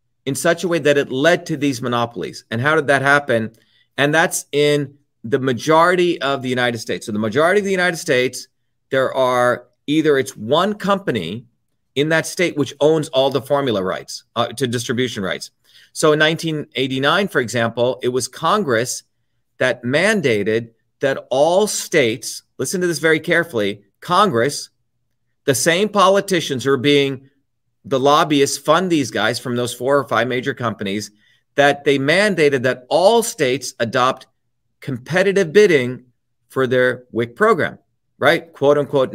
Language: English